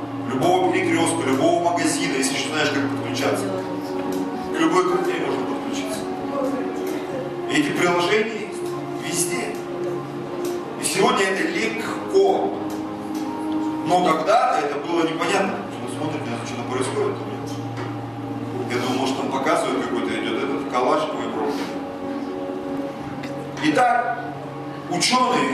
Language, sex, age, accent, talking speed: Russian, male, 40-59, native, 105 wpm